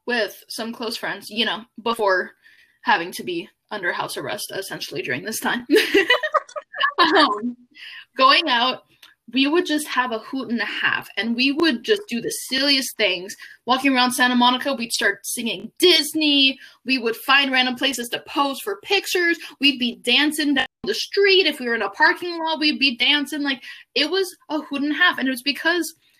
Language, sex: English, female